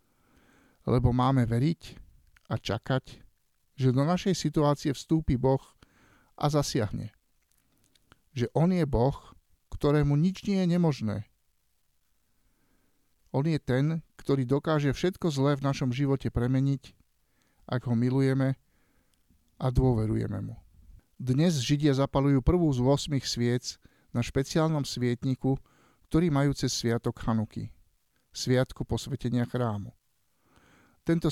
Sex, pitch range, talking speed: male, 120-145 Hz, 110 wpm